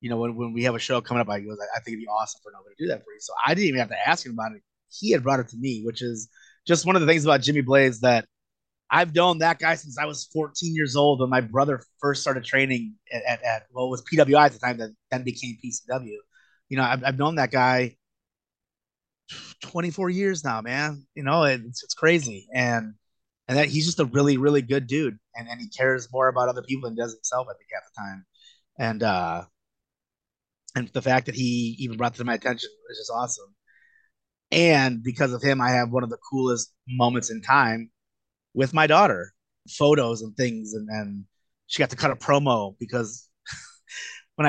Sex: male